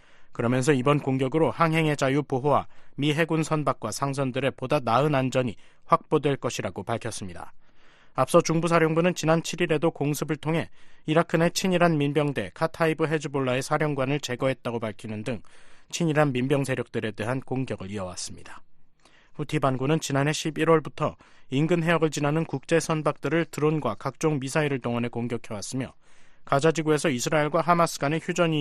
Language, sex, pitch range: Korean, male, 125-155 Hz